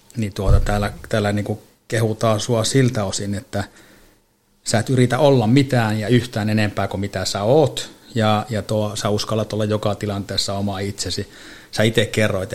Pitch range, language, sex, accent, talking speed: 100-110 Hz, Finnish, male, native, 165 wpm